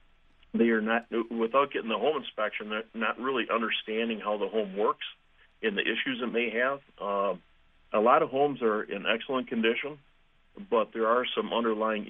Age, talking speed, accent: 50-69, 180 wpm, American